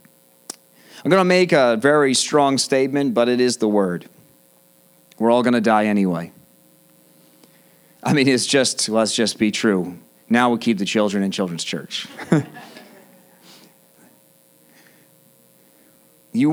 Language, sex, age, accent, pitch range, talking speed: English, male, 40-59, American, 85-125 Hz, 135 wpm